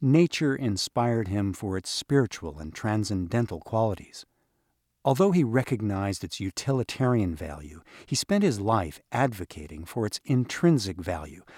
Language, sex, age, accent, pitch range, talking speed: English, male, 50-69, American, 90-130 Hz, 125 wpm